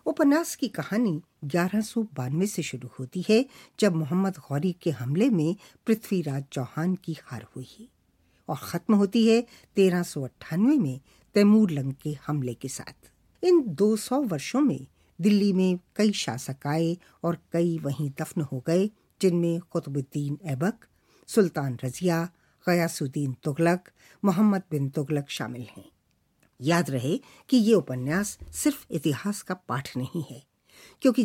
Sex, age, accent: female, 50-69, native